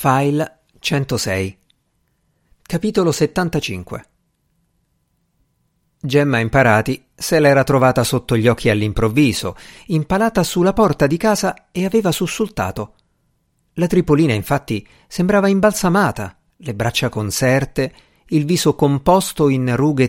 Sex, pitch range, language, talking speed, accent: male, 120-165 Hz, Italian, 100 wpm, native